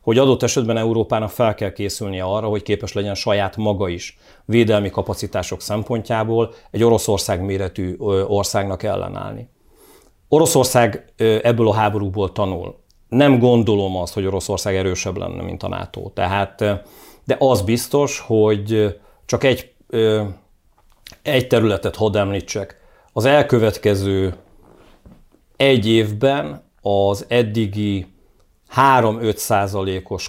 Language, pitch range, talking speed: Hungarian, 95-115 Hz, 110 wpm